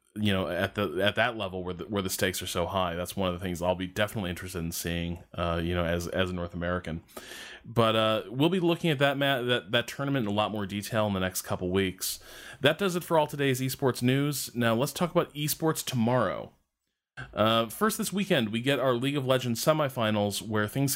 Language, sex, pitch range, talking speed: English, male, 100-130 Hz, 235 wpm